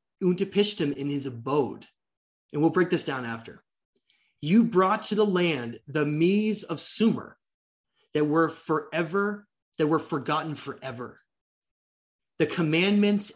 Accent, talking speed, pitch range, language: American, 125 wpm, 135-180 Hz, English